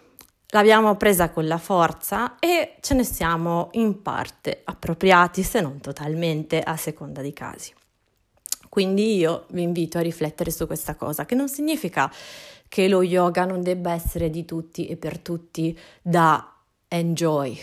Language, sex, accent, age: Italian, female, native, 30-49